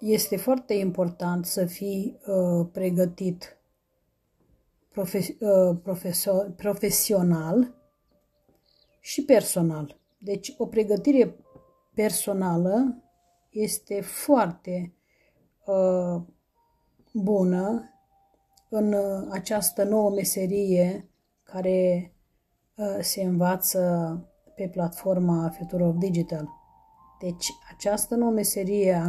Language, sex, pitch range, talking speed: Romanian, female, 180-220 Hz, 85 wpm